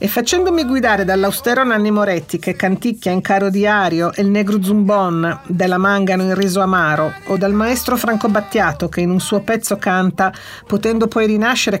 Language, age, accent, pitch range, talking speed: Italian, 50-69, native, 190-240 Hz, 175 wpm